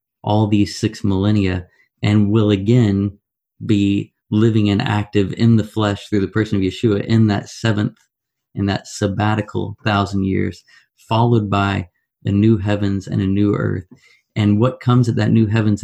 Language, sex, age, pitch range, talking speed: English, male, 30-49, 100-115 Hz, 165 wpm